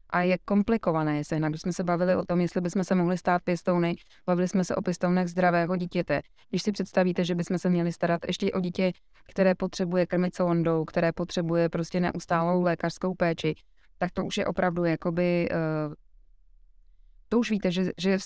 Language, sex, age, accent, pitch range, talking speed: Czech, female, 20-39, native, 170-190 Hz, 185 wpm